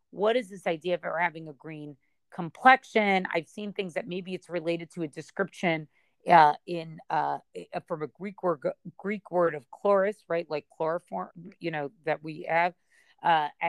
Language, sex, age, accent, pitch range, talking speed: English, female, 40-59, American, 155-185 Hz, 170 wpm